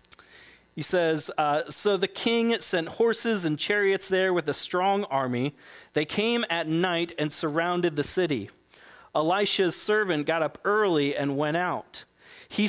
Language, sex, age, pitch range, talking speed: English, male, 30-49, 145-200 Hz, 150 wpm